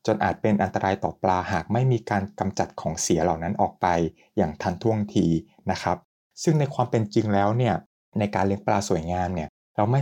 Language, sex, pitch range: Thai, male, 95-115 Hz